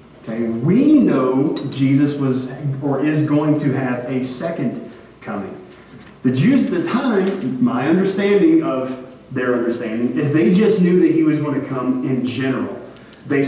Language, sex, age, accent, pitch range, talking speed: English, male, 30-49, American, 130-175 Hz, 160 wpm